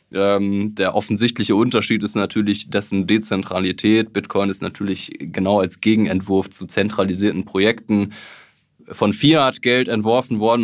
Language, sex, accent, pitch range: German, male, German, 95-110 Hz